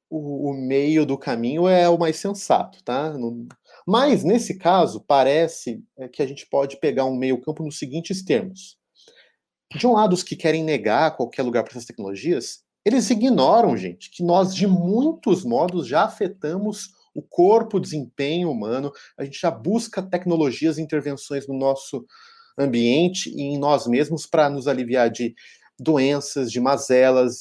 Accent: Brazilian